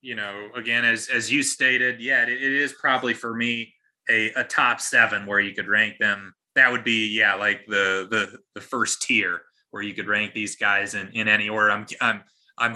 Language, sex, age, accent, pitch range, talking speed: English, male, 20-39, American, 115-140 Hz, 210 wpm